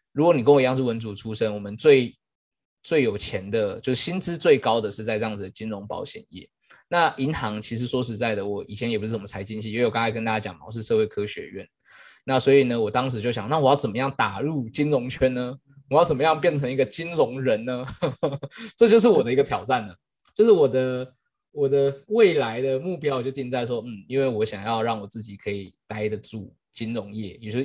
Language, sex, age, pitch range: Chinese, male, 20-39, 110-140 Hz